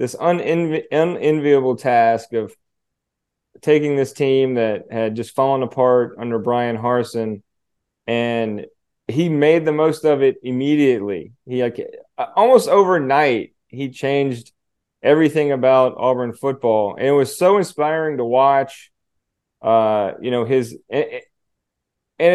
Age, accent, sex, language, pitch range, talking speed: 30-49, American, male, English, 120-150 Hz, 130 wpm